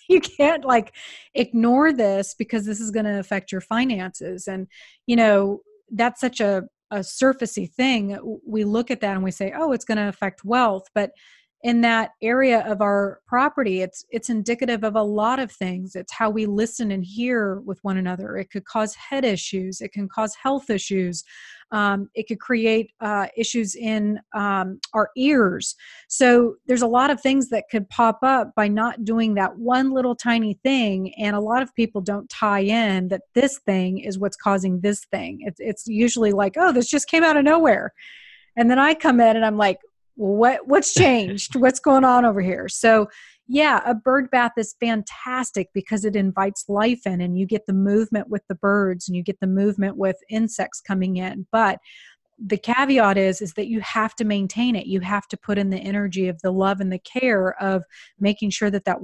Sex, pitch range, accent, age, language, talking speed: female, 195-240 Hz, American, 30-49, English, 200 wpm